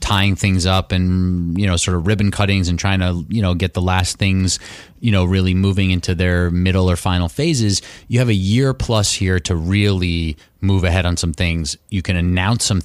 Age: 30-49